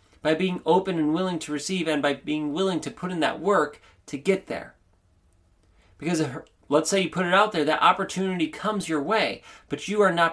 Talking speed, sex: 210 wpm, male